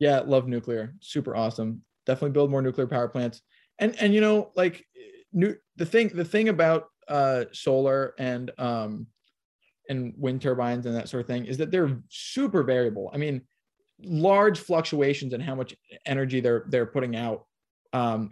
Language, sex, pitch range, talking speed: English, male, 125-165 Hz, 170 wpm